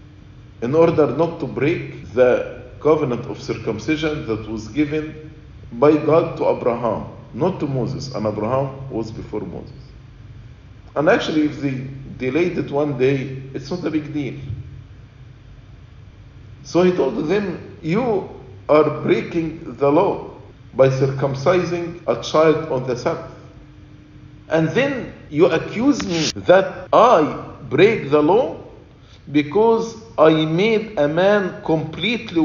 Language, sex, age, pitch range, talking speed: English, male, 50-69, 115-160 Hz, 130 wpm